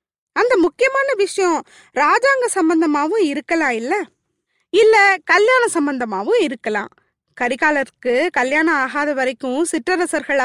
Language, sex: Tamil, female